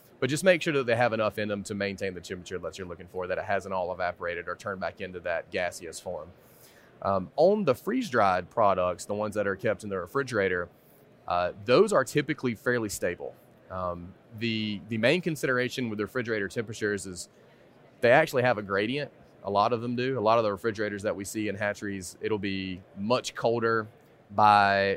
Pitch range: 100-120 Hz